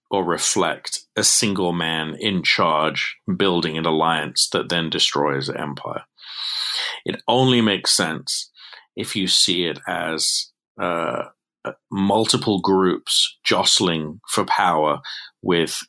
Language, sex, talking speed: English, male, 115 wpm